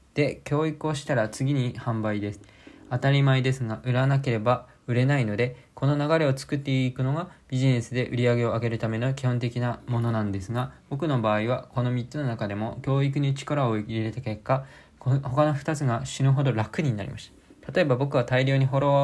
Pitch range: 115-140 Hz